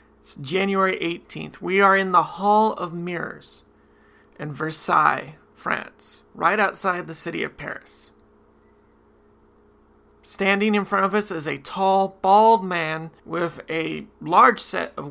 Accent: American